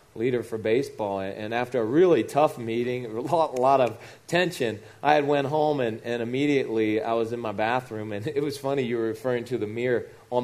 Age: 30-49